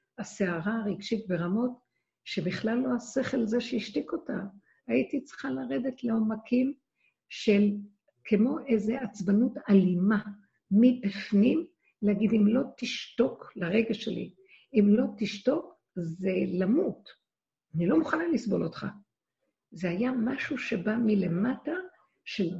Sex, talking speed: female, 110 wpm